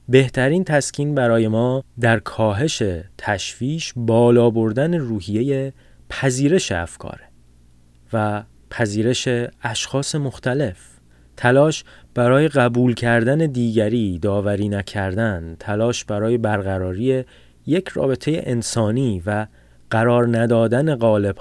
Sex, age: male, 30-49